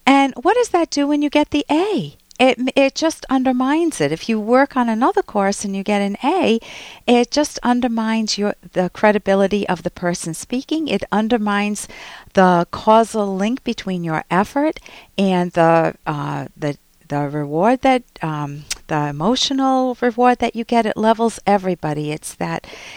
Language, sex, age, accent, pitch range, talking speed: English, female, 50-69, American, 160-220 Hz, 165 wpm